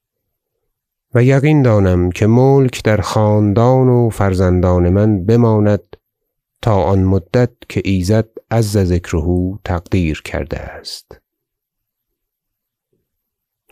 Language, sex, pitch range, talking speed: Persian, male, 95-125 Hz, 90 wpm